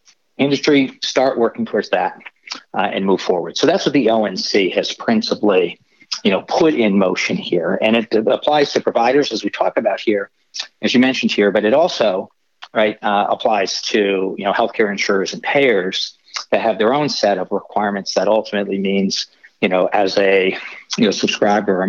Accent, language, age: American, English, 50-69